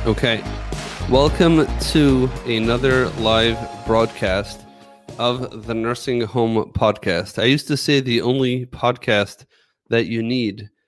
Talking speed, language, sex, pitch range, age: 115 wpm, English, male, 110-130 Hz, 30-49